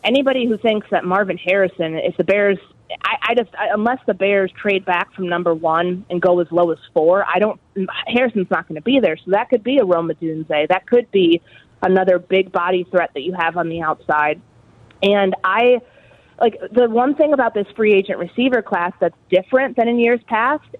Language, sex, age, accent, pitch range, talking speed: English, female, 30-49, American, 170-210 Hz, 210 wpm